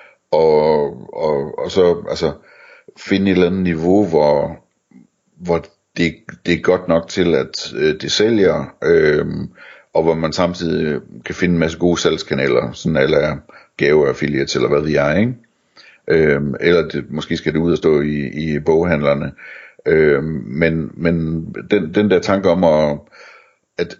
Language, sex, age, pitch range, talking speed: Danish, male, 60-79, 80-95 Hz, 160 wpm